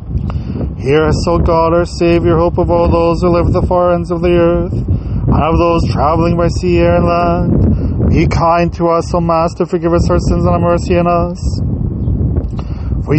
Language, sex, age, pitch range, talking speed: English, male, 30-49, 160-190 Hz, 200 wpm